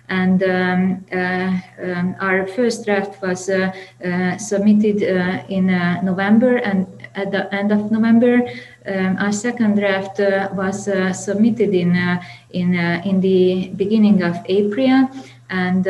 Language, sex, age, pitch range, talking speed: Slovak, female, 20-39, 175-200 Hz, 145 wpm